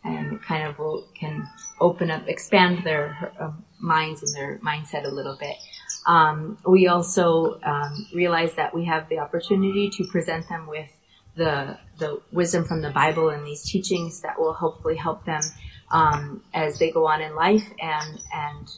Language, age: English, 30-49